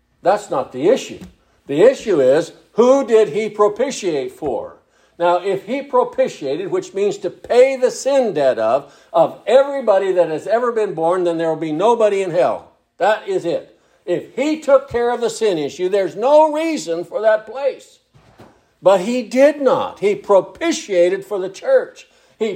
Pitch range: 220-335 Hz